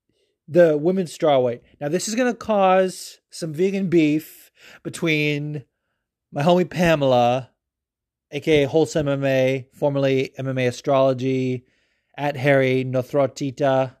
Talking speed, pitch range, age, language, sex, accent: 110 wpm, 130-155 Hz, 30-49, English, male, American